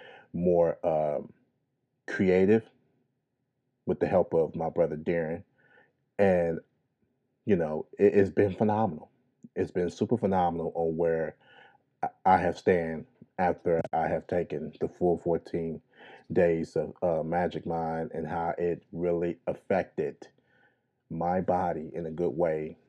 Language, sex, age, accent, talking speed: English, male, 30-49, American, 125 wpm